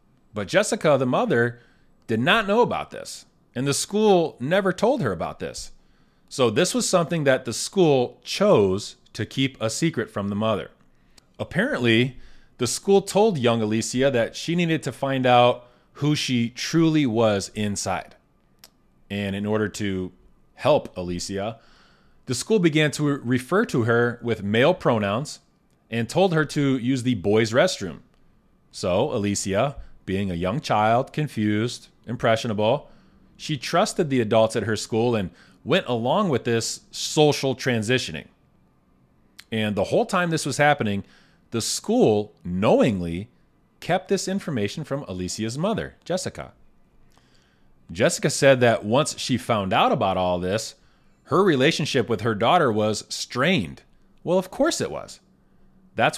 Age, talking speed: 30-49, 145 wpm